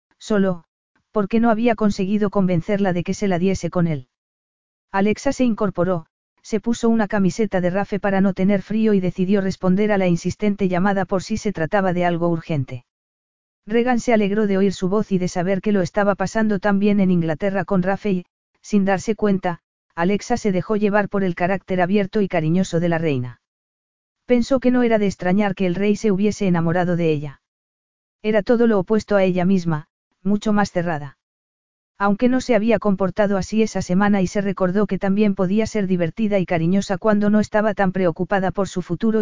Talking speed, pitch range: 195 wpm, 180-210 Hz